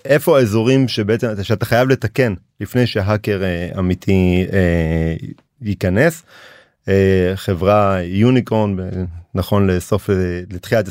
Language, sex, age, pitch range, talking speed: Hebrew, male, 30-49, 95-125 Hz, 100 wpm